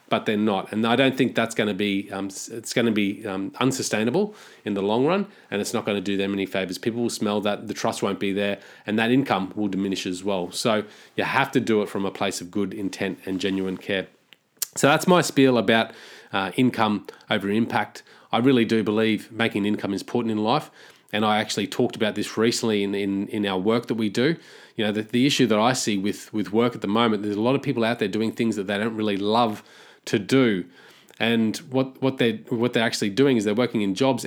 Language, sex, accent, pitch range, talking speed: English, male, Australian, 100-125 Hz, 245 wpm